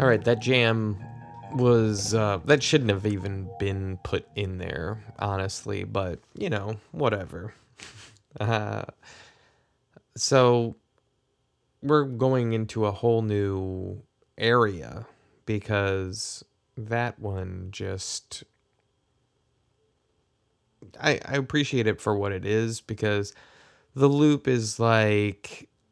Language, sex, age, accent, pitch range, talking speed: English, male, 20-39, American, 100-130 Hz, 105 wpm